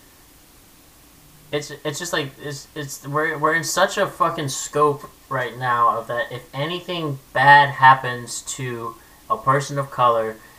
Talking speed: 145 wpm